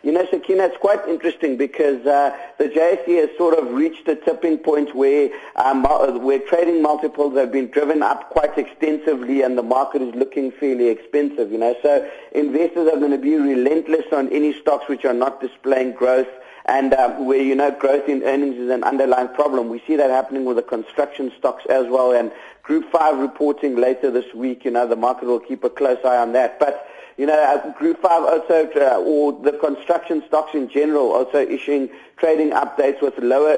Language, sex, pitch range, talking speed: English, male, 130-155 Hz, 200 wpm